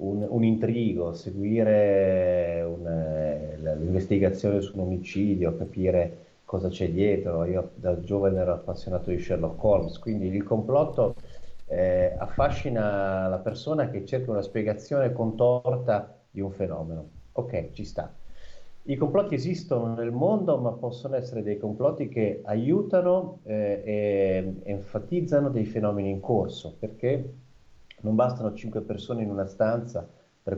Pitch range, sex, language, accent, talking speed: 90-120 Hz, male, Italian, native, 130 wpm